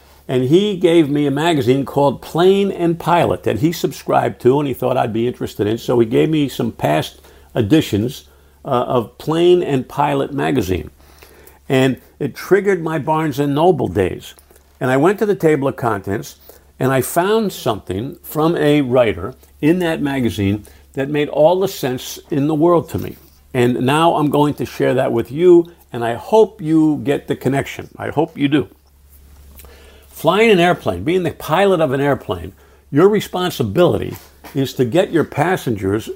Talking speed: 175 wpm